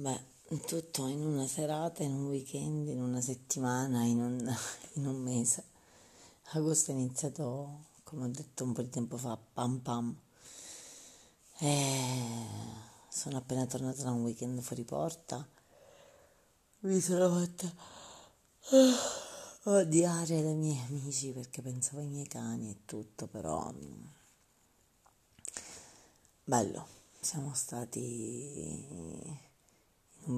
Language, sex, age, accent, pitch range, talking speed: Italian, female, 40-59, native, 120-150 Hz, 110 wpm